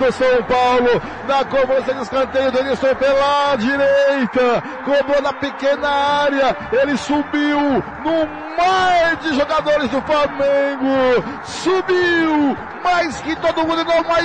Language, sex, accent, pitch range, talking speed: Portuguese, male, Brazilian, 260-290 Hz, 115 wpm